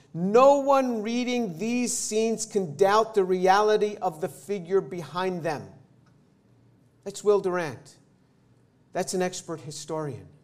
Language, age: English, 50-69